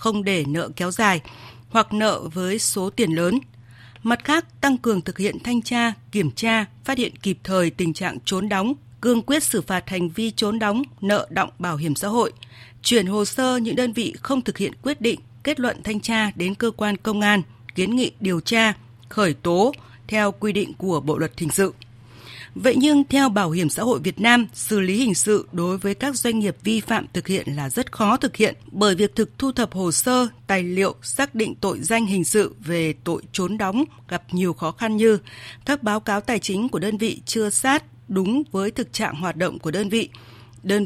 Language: Vietnamese